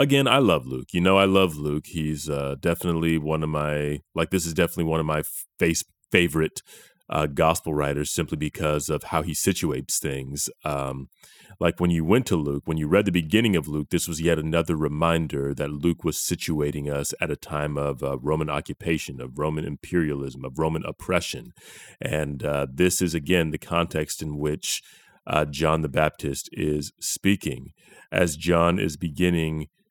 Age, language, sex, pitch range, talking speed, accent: 30-49, English, male, 75-85 Hz, 180 wpm, American